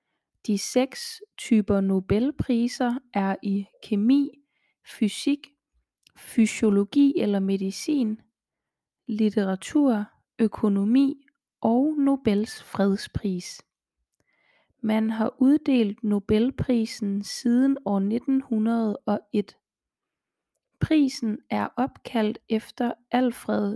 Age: 30-49